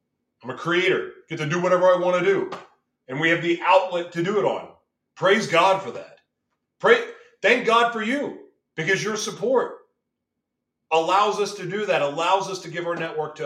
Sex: male